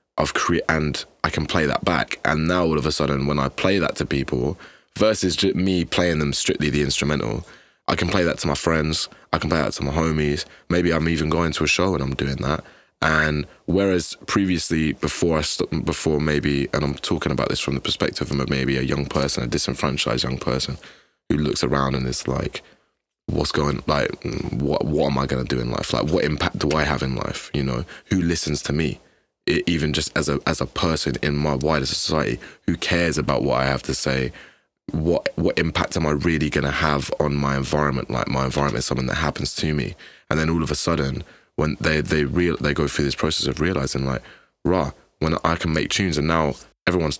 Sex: male